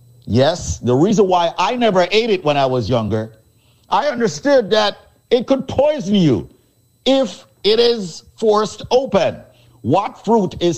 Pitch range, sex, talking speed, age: 145-205 Hz, male, 150 wpm, 50-69